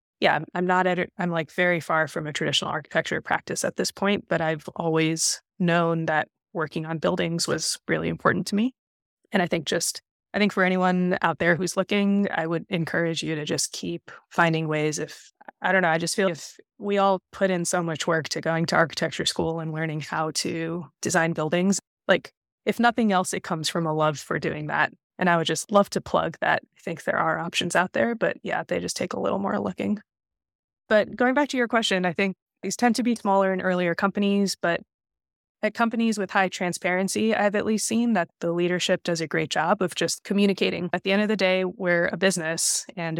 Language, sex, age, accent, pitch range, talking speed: English, female, 20-39, American, 165-195 Hz, 220 wpm